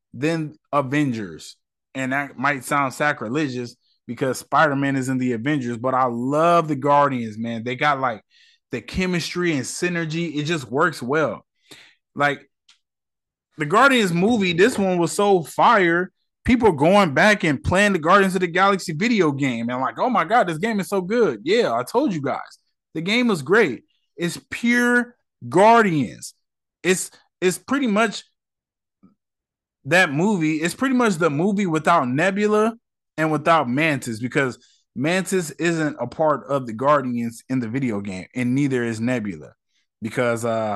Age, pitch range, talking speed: 20-39, 135-195 Hz, 160 wpm